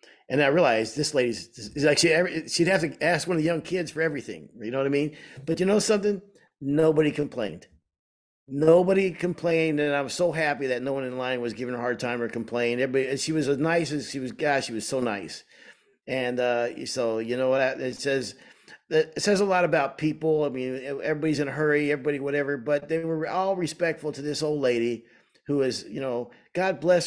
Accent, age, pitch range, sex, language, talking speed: American, 50-69, 135-180 Hz, male, English, 225 wpm